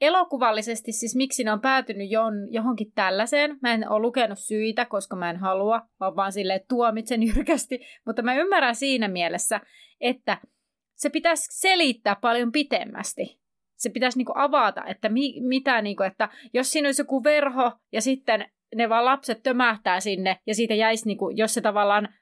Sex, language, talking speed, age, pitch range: female, Finnish, 155 wpm, 30-49, 205-260 Hz